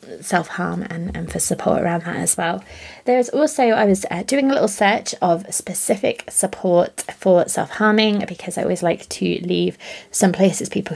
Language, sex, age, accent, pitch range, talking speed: English, female, 20-39, British, 170-210 Hz, 180 wpm